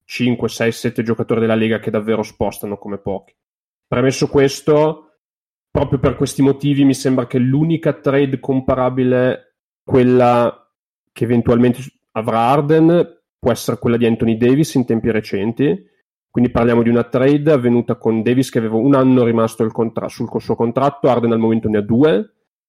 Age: 30-49